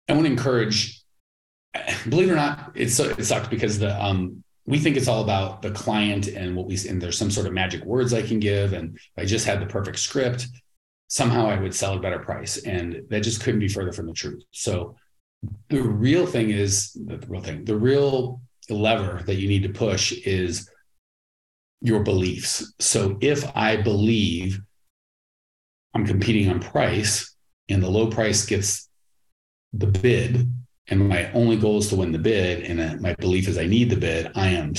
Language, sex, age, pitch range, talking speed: English, male, 40-59, 95-110 Hz, 195 wpm